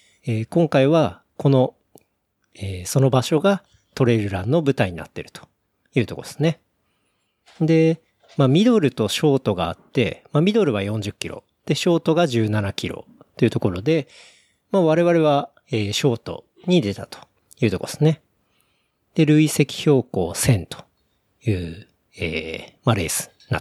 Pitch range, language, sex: 105-145 Hz, Japanese, male